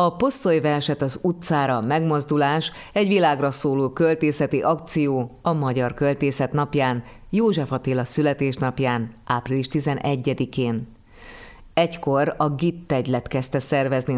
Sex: female